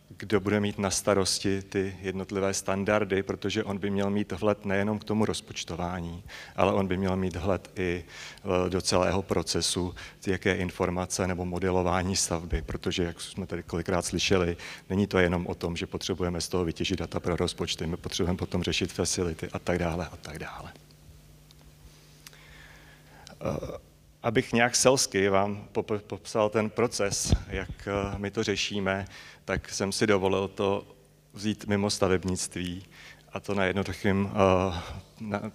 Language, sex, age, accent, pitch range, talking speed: Czech, male, 30-49, native, 90-100 Hz, 150 wpm